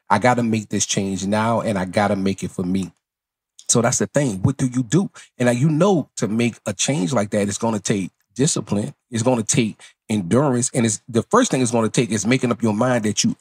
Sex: male